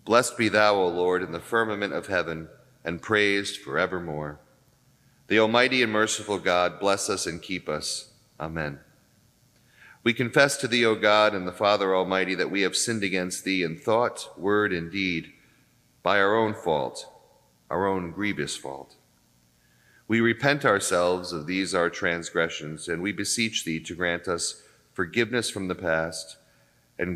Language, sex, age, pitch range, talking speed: English, male, 40-59, 80-100 Hz, 160 wpm